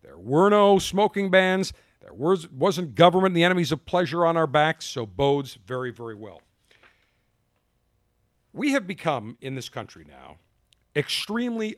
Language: English